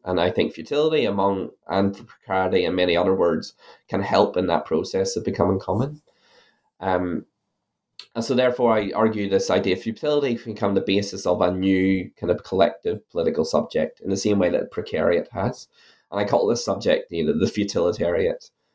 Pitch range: 95-125 Hz